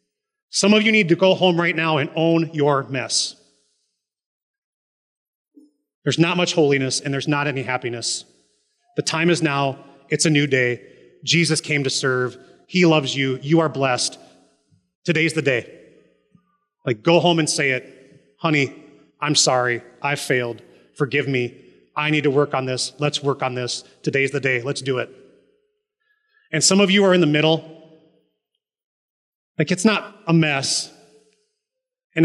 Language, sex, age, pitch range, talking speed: English, male, 30-49, 140-190 Hz, 160 wpm